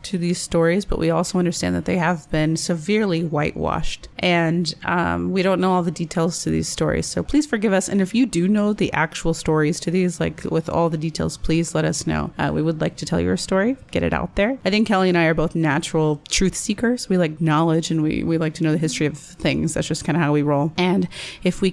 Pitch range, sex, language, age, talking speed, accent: 160-195 Hz, female, English, 30-49, 255 wpm, American